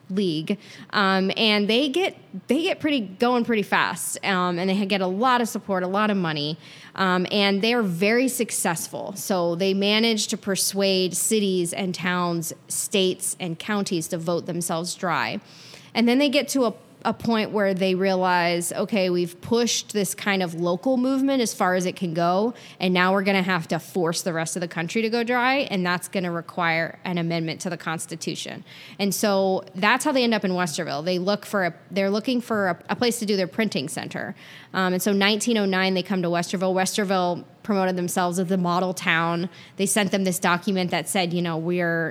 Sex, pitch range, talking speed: female, 175-205 Hz, 200 wpm